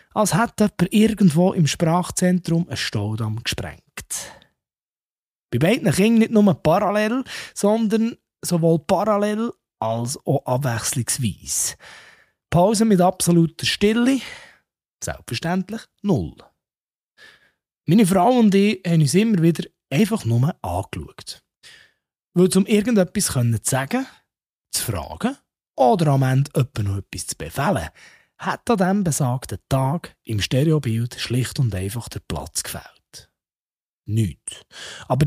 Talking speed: 110 wpm